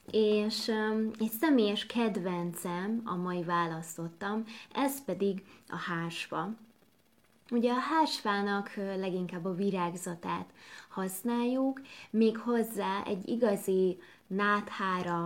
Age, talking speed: 20-39, 90 wpm